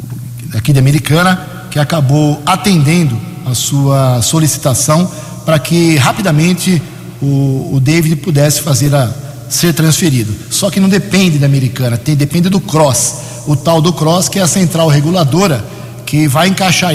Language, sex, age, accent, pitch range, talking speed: Portuguese, male, 50-69, Brazilian, 135-165 Hz, 140 wpm